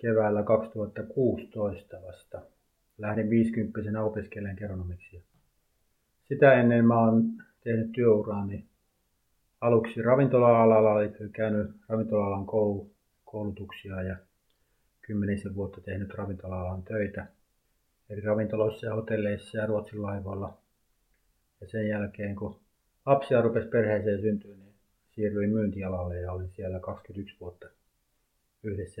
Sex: male